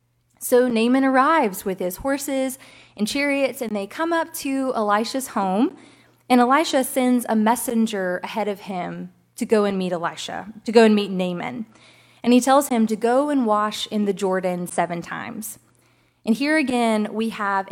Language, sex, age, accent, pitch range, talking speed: English, female, 20-39, American, 190-250 Hz, 175 wpm